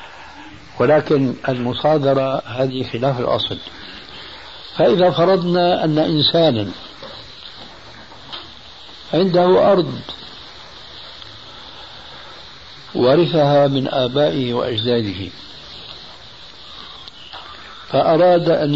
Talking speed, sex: 55 wpm, male